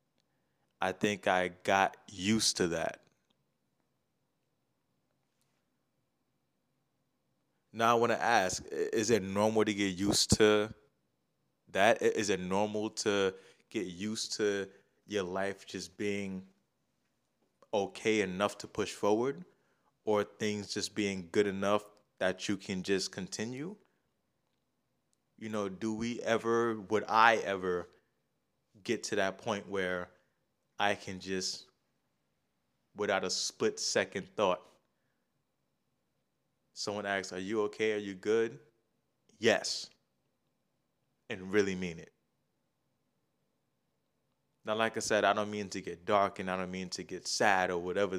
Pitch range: 95-105 Hz